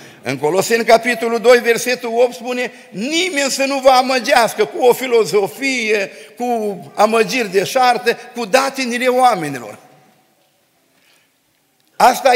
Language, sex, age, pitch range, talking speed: Romanian, male, 50-69, 220-255 Hz, 110 wpm